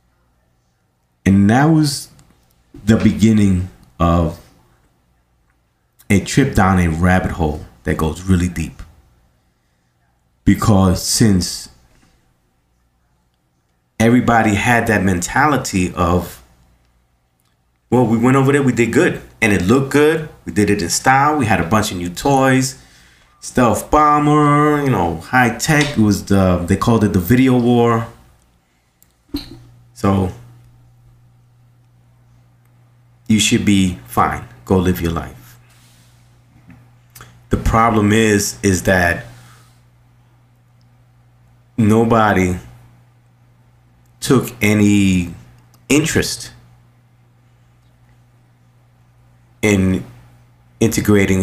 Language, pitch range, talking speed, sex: English, 85-120 Hz, 95 wpm, male